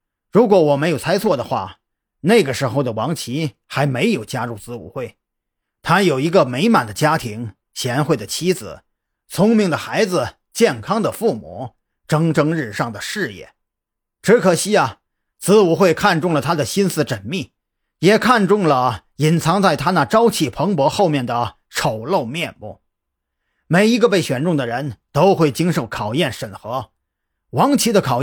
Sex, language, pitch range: male, Chinese, 125-200 Hz